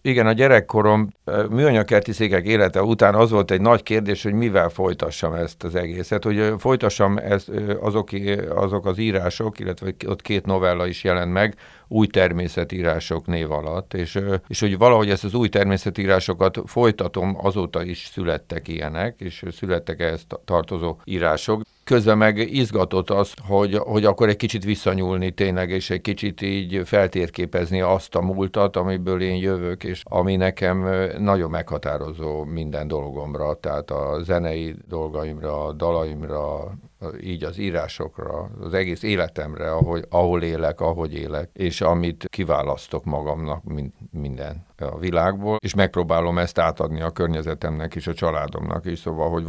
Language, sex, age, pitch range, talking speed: Hungarian, male, 50-69, 80-100 Hz, 140 wpm